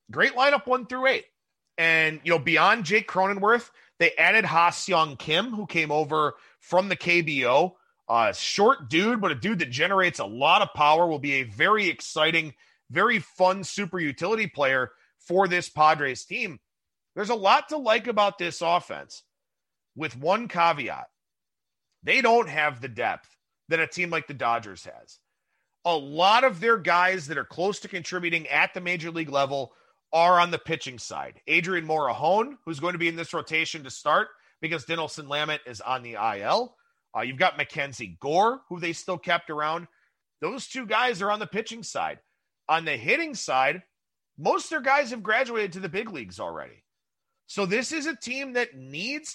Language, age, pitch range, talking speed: English, 30-49, 155-220 Hz, 180 wpm